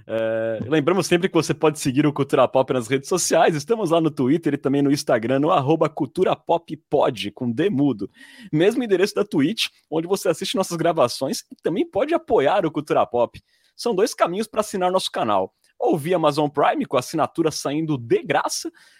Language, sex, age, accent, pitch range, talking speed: Portuguese, male, 30-49, Brazilian, 130-190 Hz, 185 wpm